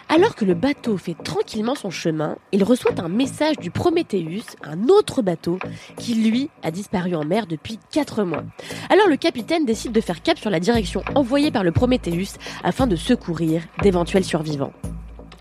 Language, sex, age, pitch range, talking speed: French, female, 20-39, 185-290 Hz, 175 wpm